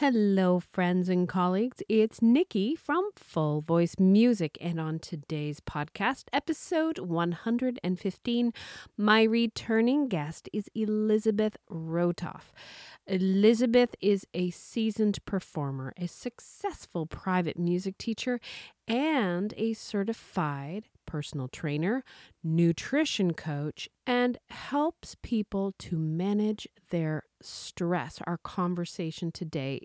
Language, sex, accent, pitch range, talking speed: English, female, American, 160-225 Hz, 100 wpm